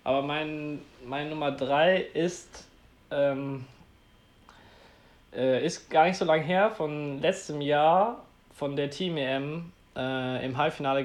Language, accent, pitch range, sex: German, German, 125-145 Hz, male